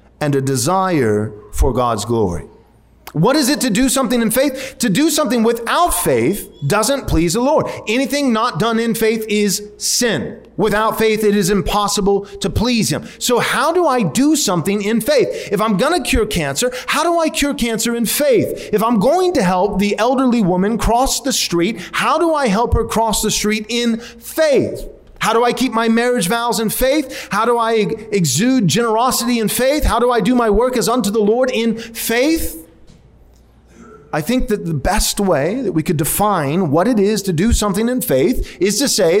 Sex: male